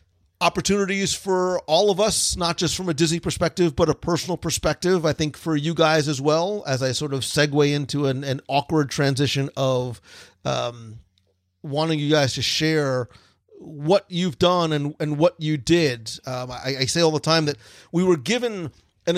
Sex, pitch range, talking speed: male, 130-170 Hz, 185 wpm